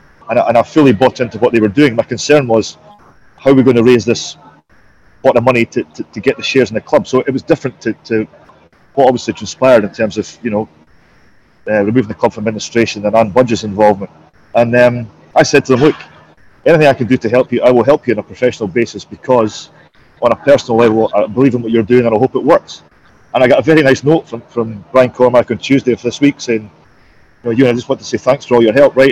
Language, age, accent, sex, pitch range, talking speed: English, 30-49, British, male, 110-130 Hz, 255 wpm